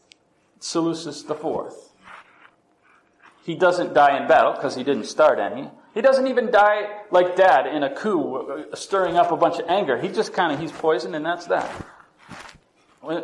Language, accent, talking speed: English, American, 170 wpm